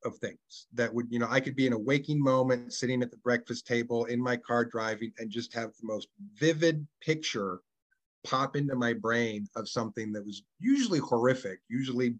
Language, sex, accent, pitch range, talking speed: English, male, American, 115-145 Hz, 195 wpm